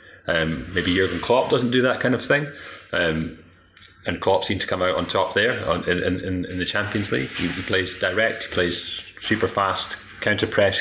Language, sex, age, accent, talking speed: English, male, 30-49, British, 200 wpm